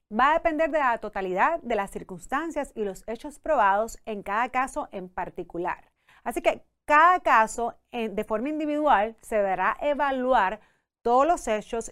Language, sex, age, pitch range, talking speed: Spanish, female, 30-49, 210-275 Hz, 155 wpm